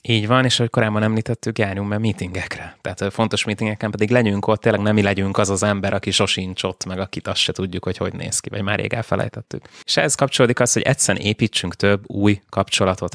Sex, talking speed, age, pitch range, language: male, 210 wpm, 20-39, 95-110 Hz, Hungarian